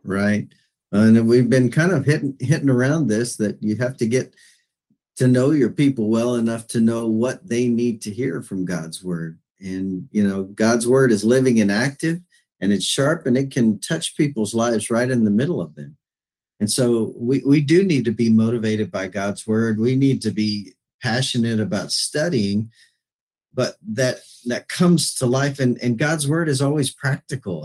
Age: 50-69